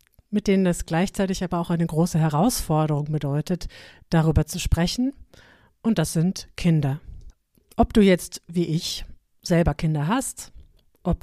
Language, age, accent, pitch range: German, 50-69, German, 155-190 Hz